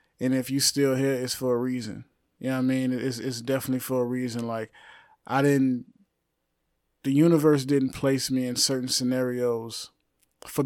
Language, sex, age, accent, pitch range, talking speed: English, male, 30-49, American, 125-140 Hz, 180 wpm